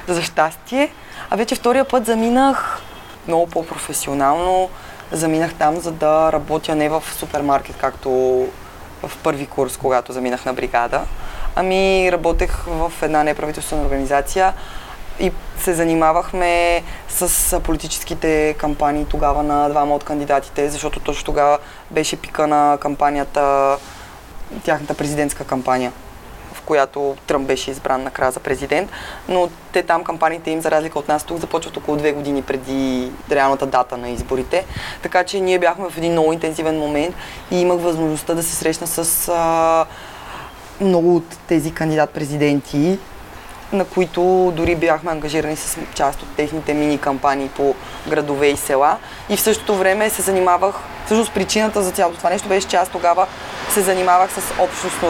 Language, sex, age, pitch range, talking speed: Bulgarian, female, 20-39, 145-180 Hz, 145 wpm